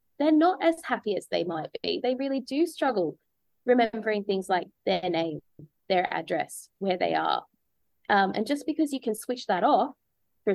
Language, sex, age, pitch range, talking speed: English, female, 20-39, 195-260 Hz, 180 wpm